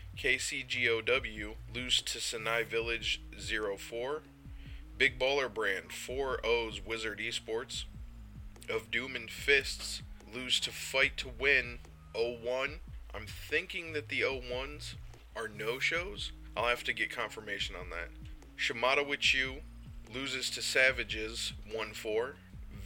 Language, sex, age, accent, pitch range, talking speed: English, male, 20-39, American, 110-145 Hz, 115 wpm